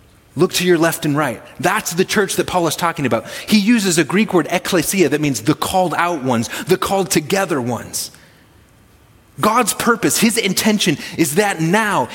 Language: English